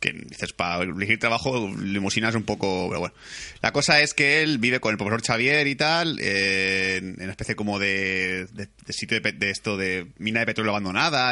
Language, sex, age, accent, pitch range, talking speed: Spanish, male, 30-49, Spanish, 105-130 Hz, 215 wpm